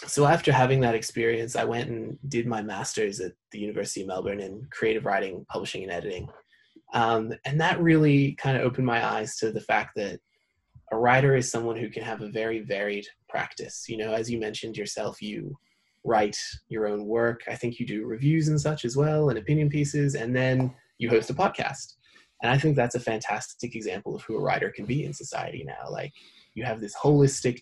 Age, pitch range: 20-39, 110-135 Hz